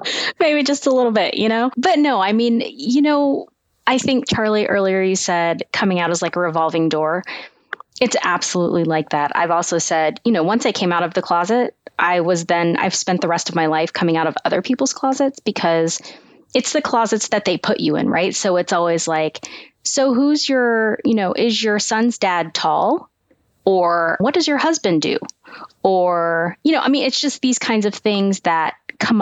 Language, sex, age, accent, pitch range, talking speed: English, female, 20-39, American, 170-240 Hz, 205 wpm